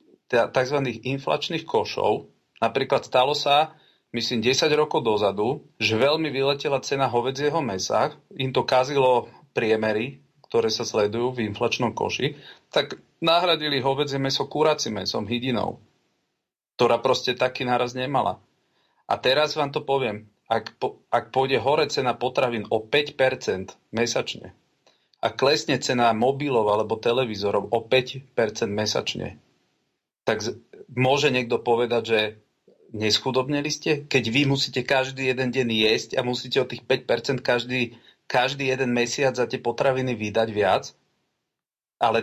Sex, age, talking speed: male, 40-59, 130 wpm